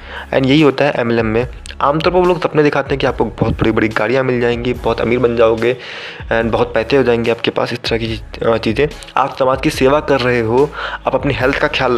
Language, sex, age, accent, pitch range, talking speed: Hindi, male, 20-39, native, 115-150 Hz, 245 wpm